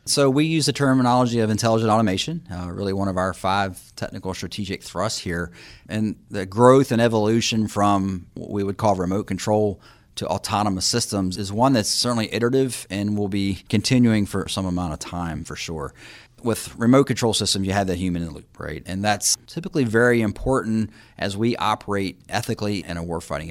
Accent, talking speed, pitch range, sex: American, 185 wpm, 90-110 Hz, male